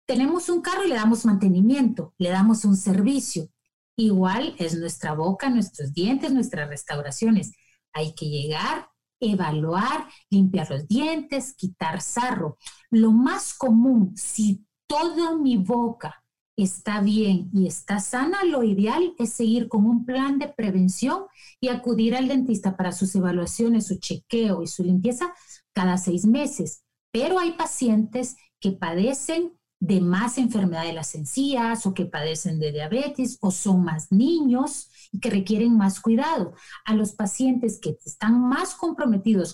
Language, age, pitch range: Spanish, 40-59, 185-255 Hz